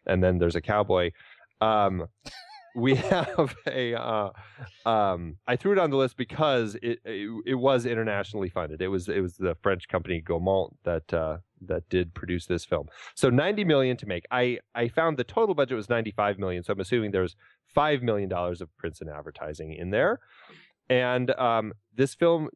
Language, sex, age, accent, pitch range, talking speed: English, male, 30-49, American, 95-125 Hz, 185 wpm